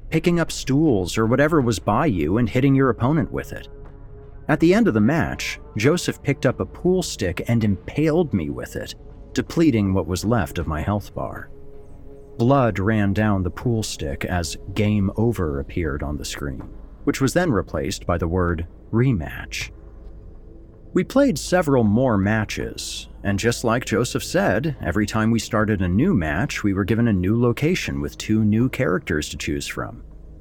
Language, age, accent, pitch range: English, 40-59, American, 90-125 Hz